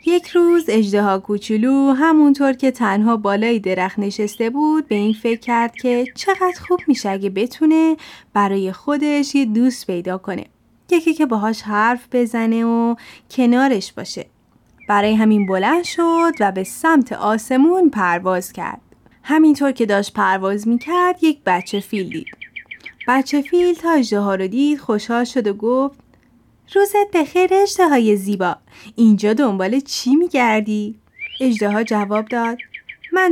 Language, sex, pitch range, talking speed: Persian, female, 210-295 Hz, 135 wpm